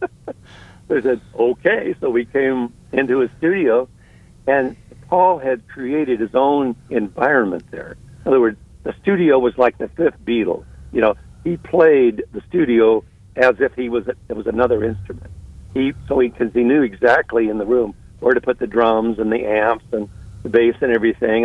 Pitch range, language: 110-135 Hz, English